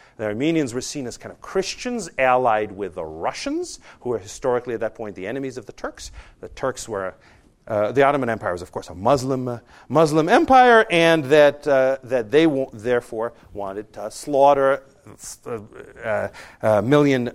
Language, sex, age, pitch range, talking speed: English, male, 50-69, 120-170 Hz, 175 wpm